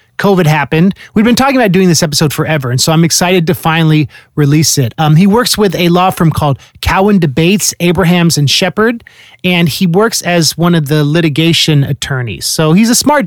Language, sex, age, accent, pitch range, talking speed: English, male, 30-49, American, 150-185 Hz, 200 wpm